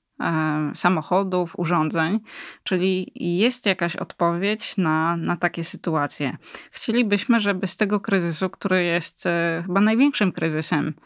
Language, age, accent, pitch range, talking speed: Polish, 20-39, native, 170-200 Hz, 110 wpm